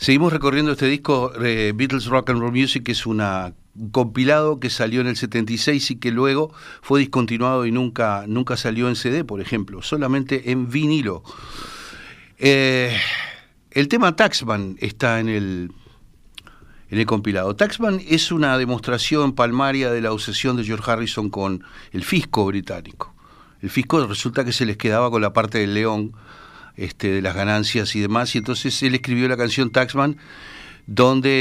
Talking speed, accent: 165 wpm, Argentinian